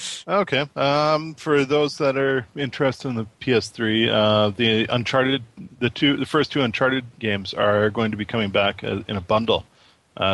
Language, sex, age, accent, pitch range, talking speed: English, male, 20-39, American, 100-125 Hz, 175 wpm